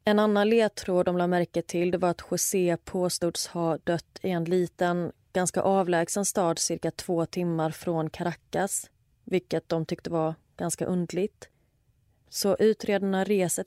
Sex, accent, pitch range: female, native, 165-190 Hz